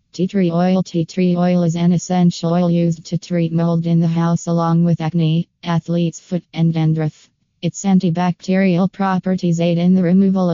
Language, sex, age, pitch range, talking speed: English, female, 20-39, 165-180 Hz, 175 wpm